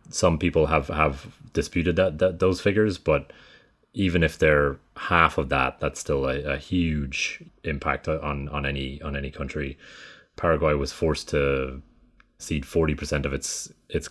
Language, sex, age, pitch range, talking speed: English, male, 30-49, 70-85 Hz, 160 wpm